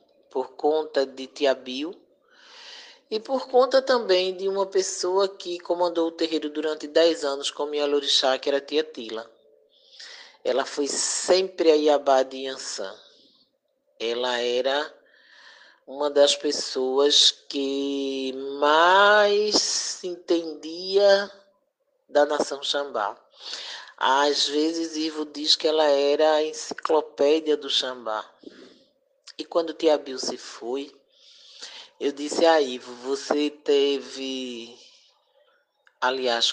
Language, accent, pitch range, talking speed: Portuguese, Brazilian, 140-190 Hz, 110 wpm